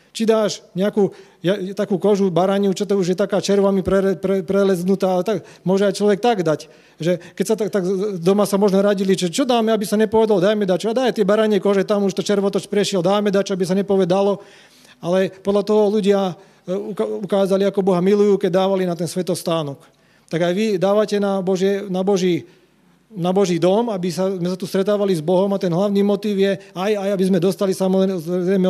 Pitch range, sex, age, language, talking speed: 180-205 Hz, male, 40-59, Slovak, 205 wpm